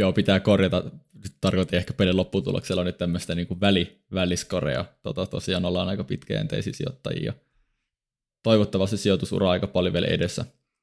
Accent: native